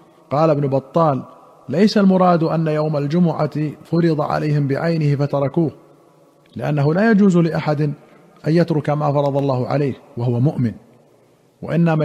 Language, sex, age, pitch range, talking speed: Arabic, male, 50-69, 145-170 Hz, 125 wpm